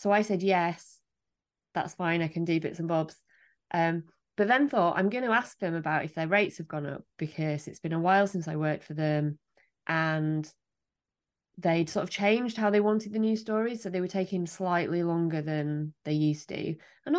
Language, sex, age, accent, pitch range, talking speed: English, female, 20-39, British, 165-210 Hz, 210 wpm